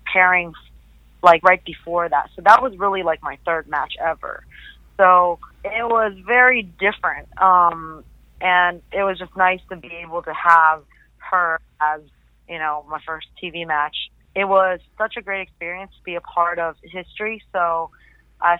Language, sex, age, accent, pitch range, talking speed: English, female, 30-49, American, 170-200 Hz, 170 wpm